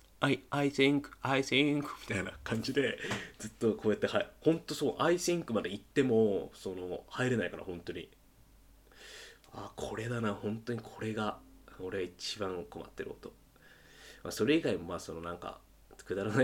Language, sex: Japanese, male